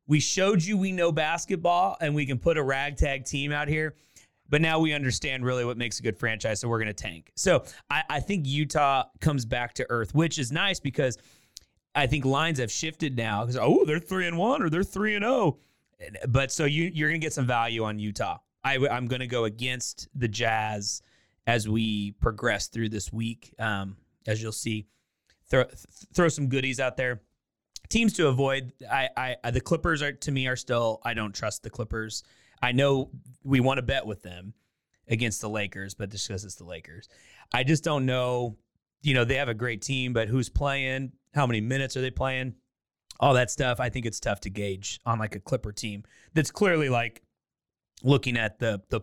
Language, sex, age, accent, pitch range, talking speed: English, male, 30-49, American, 110-150 Hz, 210 wpm